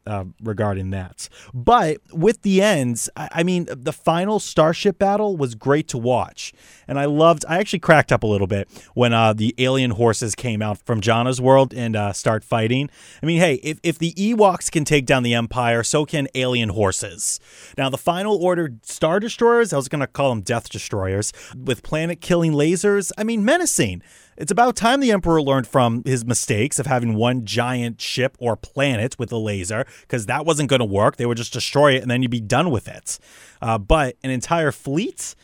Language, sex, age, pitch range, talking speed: English, male, 30-49, 115-165 Hz, 205 wpm